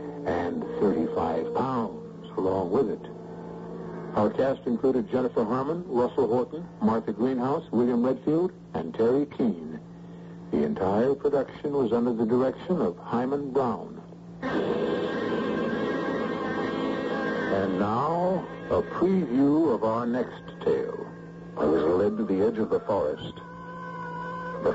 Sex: male